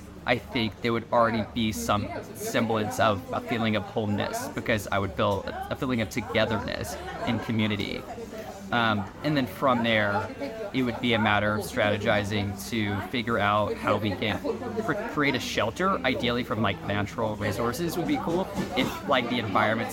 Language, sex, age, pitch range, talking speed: English, male, 20-39, 105-130 Hz, 170 wpm